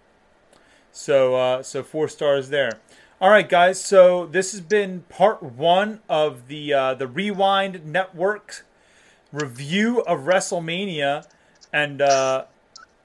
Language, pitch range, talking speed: English, 155-195 Hz, 120 wpm